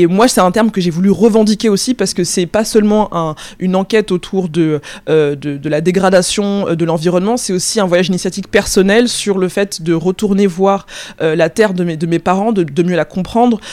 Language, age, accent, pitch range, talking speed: French, 20-39, French, 175-215 Hz, 220 wpm